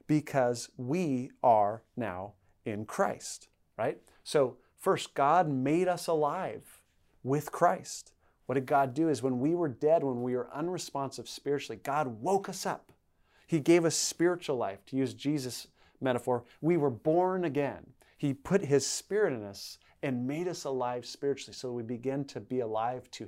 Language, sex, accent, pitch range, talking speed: English, male, American, 125-155 Hz, 165 wpm